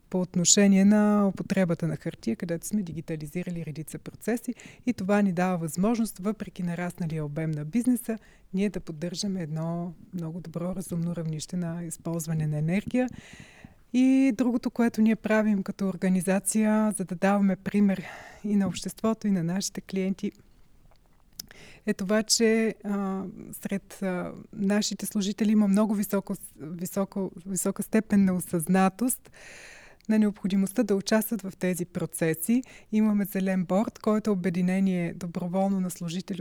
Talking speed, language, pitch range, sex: 140 wpm, Bulgarian, 180-215 Hz, female